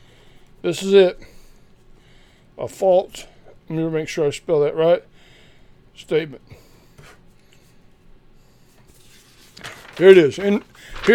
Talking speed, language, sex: 80 wpm, English, male